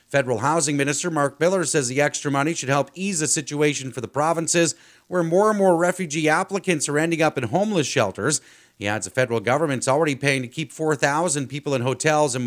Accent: American